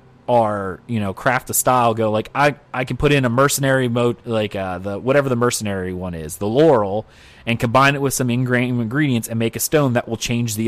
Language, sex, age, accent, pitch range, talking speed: English, male, 30-49, American, 105-130 Hz, 230 wpm